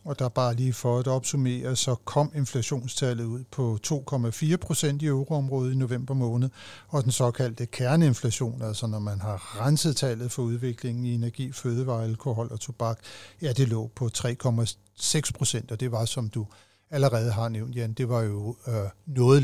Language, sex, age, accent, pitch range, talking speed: Danish, male, 60-79, native, 115-140 Hz, 170 wpm